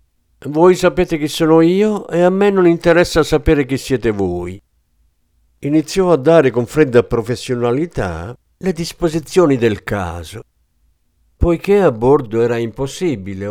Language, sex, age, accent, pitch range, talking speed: Italian, male, 50-69, native, 95-160 Hz, 130 wpm